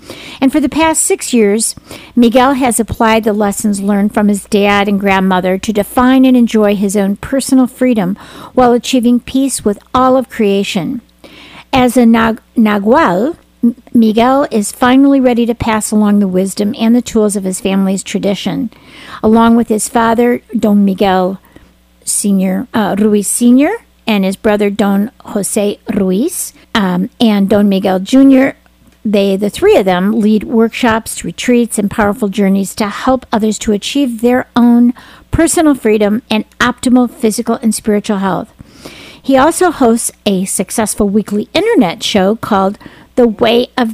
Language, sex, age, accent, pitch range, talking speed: English, female, 50-69, American, 205-250 Hz, 150 wpm